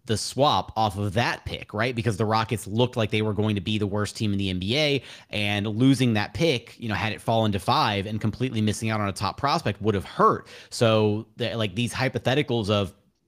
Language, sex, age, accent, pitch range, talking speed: English, male, 30-49, American, 105-120 Hz, 225 wpm